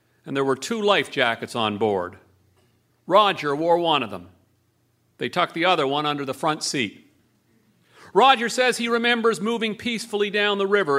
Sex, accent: male, American